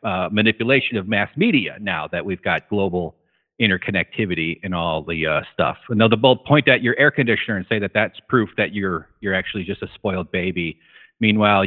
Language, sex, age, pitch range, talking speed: English, male, 40-59, 115-170 Hz, 195 wpm